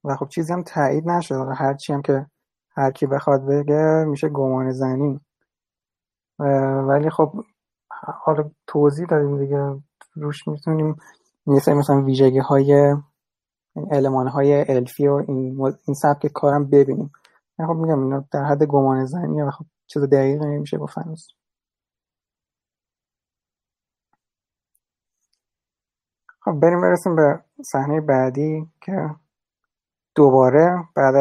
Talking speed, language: 115 wpm, Persian